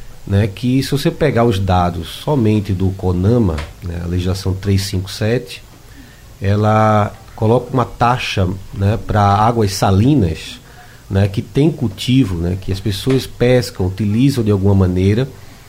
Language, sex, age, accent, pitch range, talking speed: Portuguese, male, 30-49, Brazilian, 100-125 Hz, 135 wpm